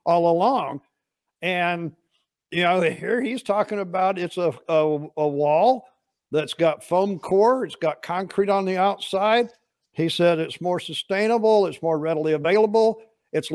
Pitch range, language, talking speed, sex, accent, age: 165-205 Hz, English, 145 wpm, male, American, 60-79